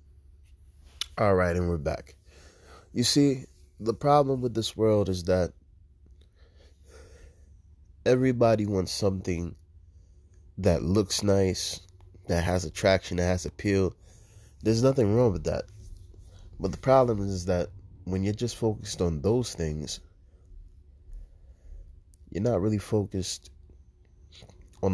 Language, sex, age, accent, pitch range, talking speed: English, male, 20-39, American, 80-100 Hz, 115 wpm